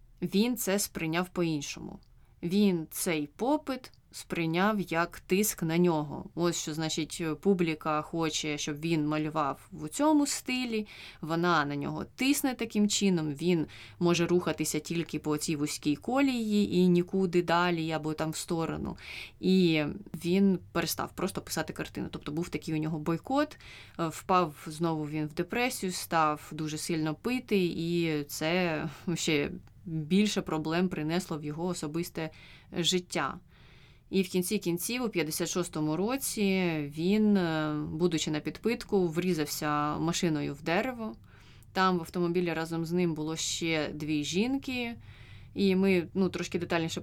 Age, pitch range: 20-39, 155-185 Hz